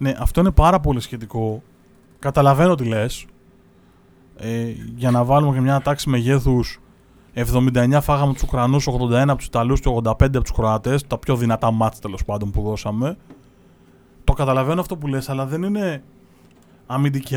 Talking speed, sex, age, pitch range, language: 150 wpm, male, 20-39, 125-155 Hz, Greek